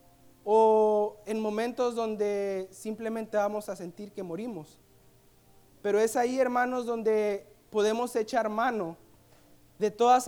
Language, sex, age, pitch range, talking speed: Spanish, male, 40-59, 195-235 Hz, 115 wpm